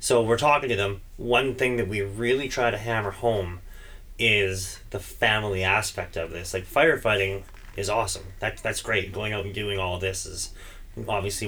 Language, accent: English, American